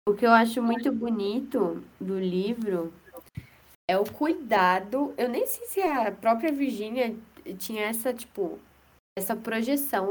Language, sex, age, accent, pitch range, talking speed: Portuguese, female, 10-29, Brazilian, 185-245 Hz, 135 wpm